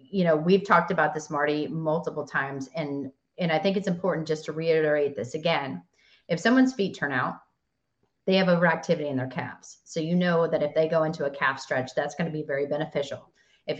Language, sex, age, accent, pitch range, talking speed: English, female, 30-49, American, 150-180 Hz, 215 wpm